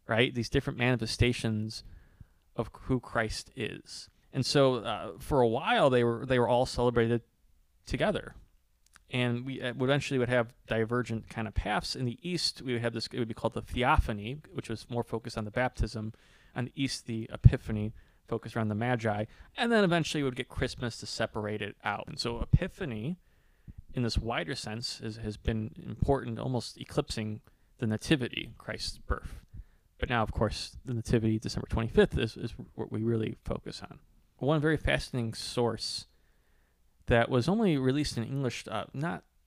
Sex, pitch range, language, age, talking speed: male, 110-130 Hz, English, 30-49, 175 wpm